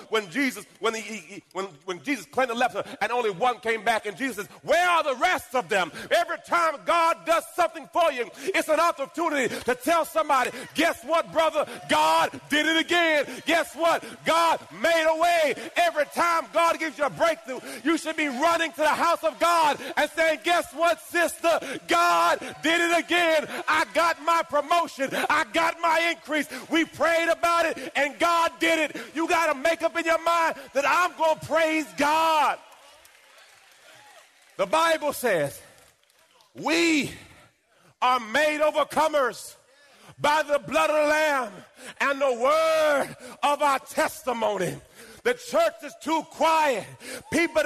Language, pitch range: English, 270-330 Hz